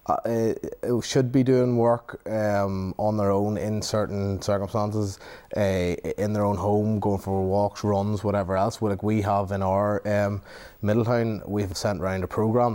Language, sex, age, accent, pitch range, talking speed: English, male, 30-49, Irish, 100-120 Hz, 175 wpm